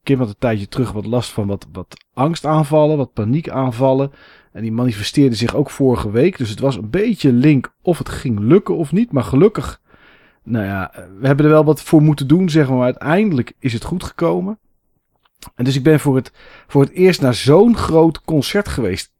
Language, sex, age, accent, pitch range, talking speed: Dutch, male, 40-59, Dutch, 105-145 Hz, 205 wpm